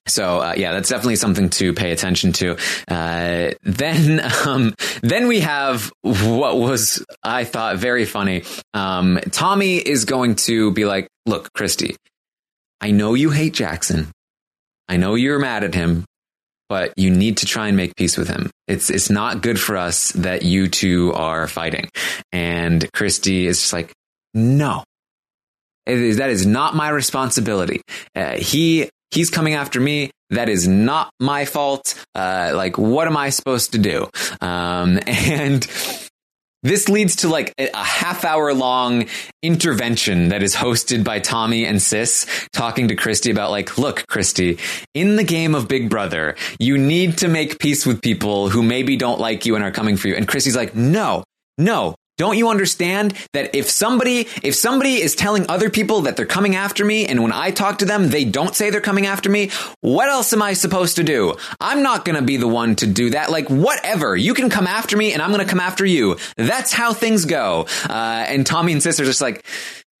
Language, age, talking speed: English, 20-39, 190 wpm